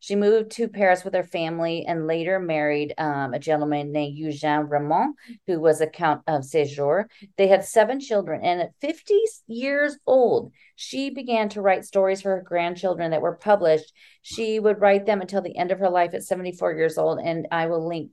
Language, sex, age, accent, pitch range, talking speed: English, female, 40-59, American, 155-190 Hz, 200 wpm